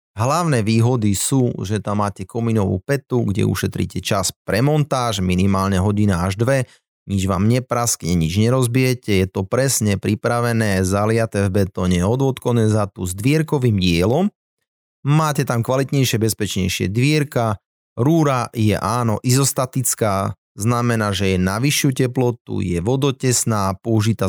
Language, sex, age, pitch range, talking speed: Slovak, male, 30-49, 95-125 Hz, 125 wpm